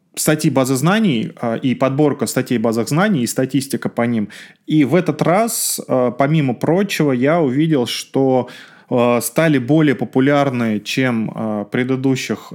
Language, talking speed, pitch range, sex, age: Russian, 130 wpm, 120-150 Hz, male, 20-39